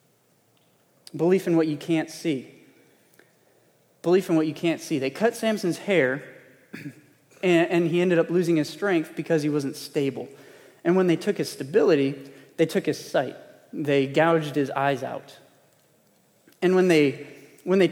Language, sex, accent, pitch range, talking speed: English, male, American, 140-175 Hz, 160 wpm